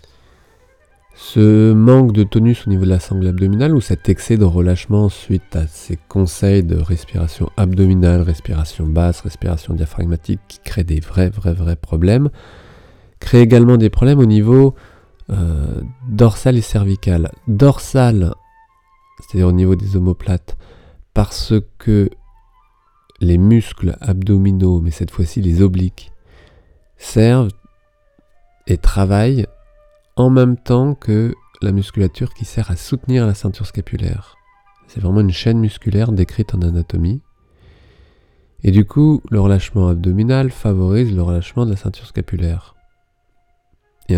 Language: French